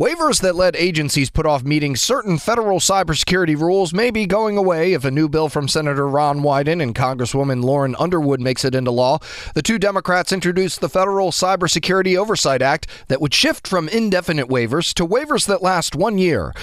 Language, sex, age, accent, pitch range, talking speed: English, male, 30-49, American, 135-185 Hz, 190 wpm